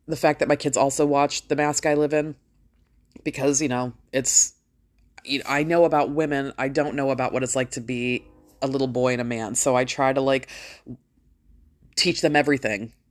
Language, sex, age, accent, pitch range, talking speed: English, female, 20-39, American, 140-170 Hz, 195 wpm